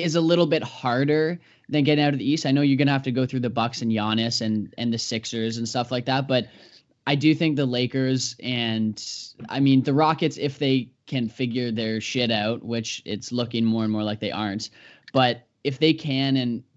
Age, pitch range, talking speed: 10-29, 115-140 Hz, 225 wpm